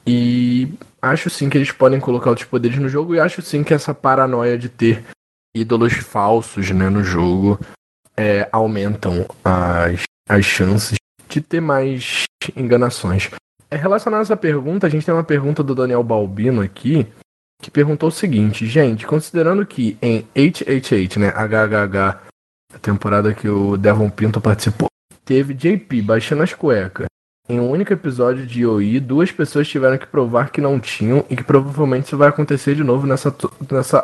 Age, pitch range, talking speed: 20-39, 110-150 Hz, 165 wpm